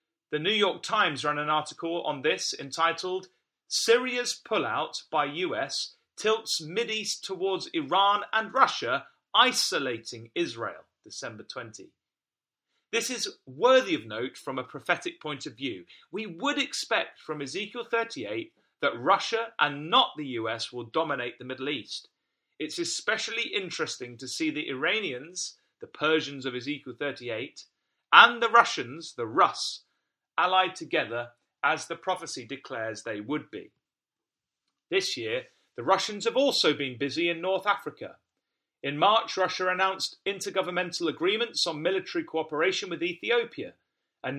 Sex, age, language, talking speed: male, 30-49, English, 135 wpm